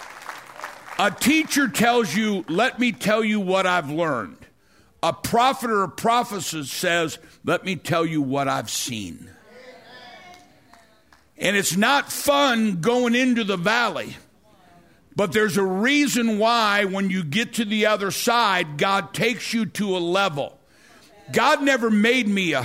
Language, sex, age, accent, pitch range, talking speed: English, male, 60-79, American, 180-240 Hz, 145 wpm